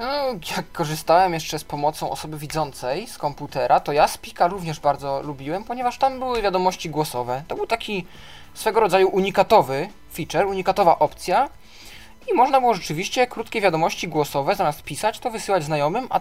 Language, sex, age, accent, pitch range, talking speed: Polish, male, 20-39, native, 145-200 Hz, 160 wpm